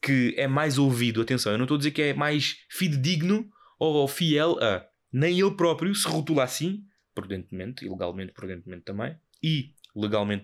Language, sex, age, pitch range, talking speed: Portuguese, male, 20-39, 115-160 Hz, 165 wpm